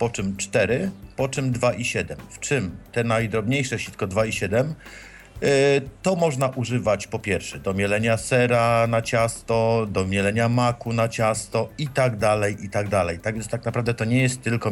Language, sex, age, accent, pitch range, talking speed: Polish, male, 50-69, native, 100-130 Hz, 190 wpm